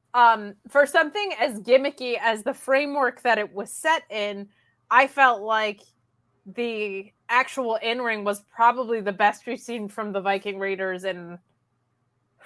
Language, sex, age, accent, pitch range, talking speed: English, female, 20-39, American, 210-255 Hz, 145 wpm